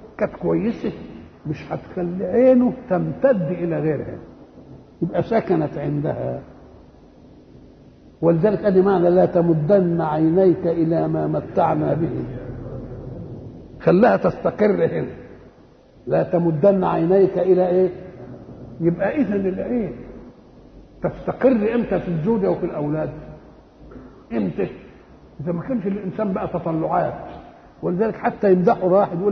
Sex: male